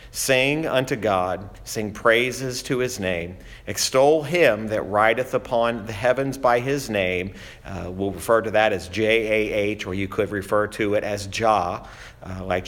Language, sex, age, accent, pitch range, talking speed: English, male, 50-69, American, 105-130 Hz, 165 wpm